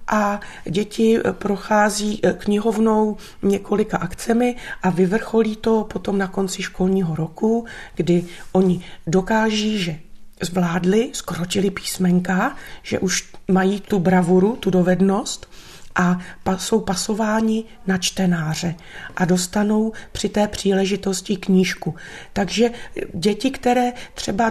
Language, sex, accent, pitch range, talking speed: Czech, female, native, 190-220 Hz, 105 wpm